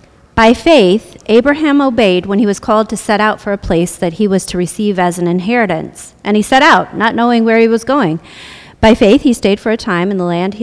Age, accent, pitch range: 40-59, American, 180-245 Hz